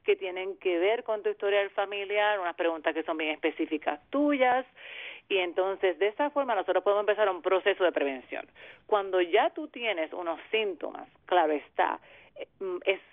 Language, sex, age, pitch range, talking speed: English, female, 40-59, 160-210 Hz, 165 wpm